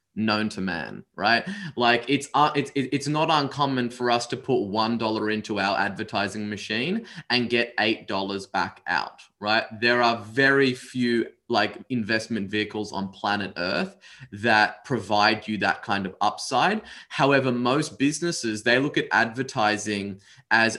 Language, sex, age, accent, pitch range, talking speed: English, male, 20-39, Australian, 110-145 Hz, 155 wpm